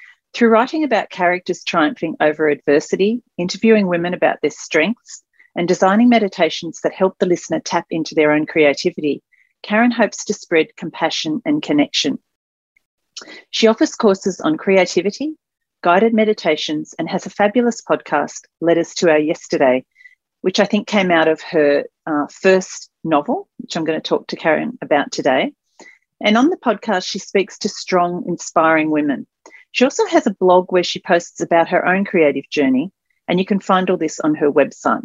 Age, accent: 40-59, Australian